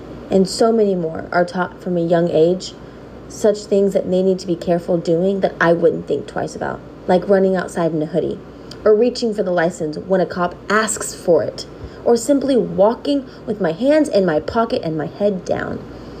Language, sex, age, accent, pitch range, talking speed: English, female, 20-39, American, 170-205 Hz, 205 wpm